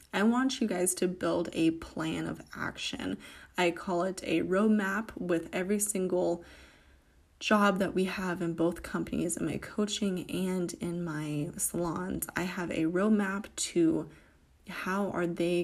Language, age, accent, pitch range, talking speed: English, 20-39, American, 170-210 Hz, 155 wpm